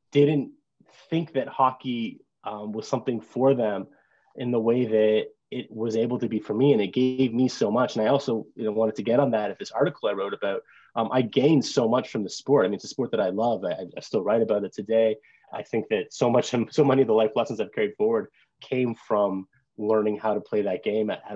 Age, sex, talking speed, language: 20-39, male, 245 wpm, English